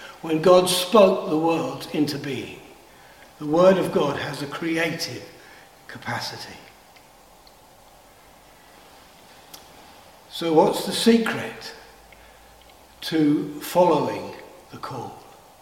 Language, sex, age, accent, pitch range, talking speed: English, male, 60-79, British, 165-210 Hz, 90 wpm